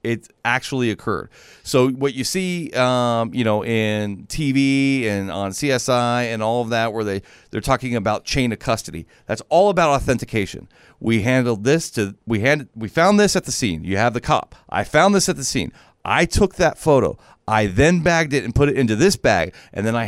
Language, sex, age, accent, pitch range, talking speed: English, male, 40-59, American, 110-145 Hz, 210 wpm